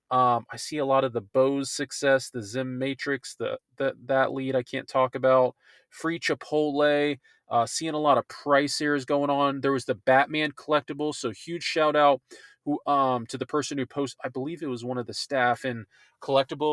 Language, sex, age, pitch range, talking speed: English, male, 20-39, 125-145 Hz, 205 wpm